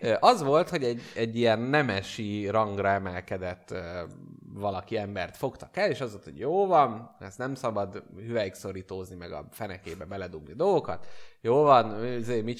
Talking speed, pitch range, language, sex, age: 155 wpm, 100-140 Hz, Hungarian, male, 30-49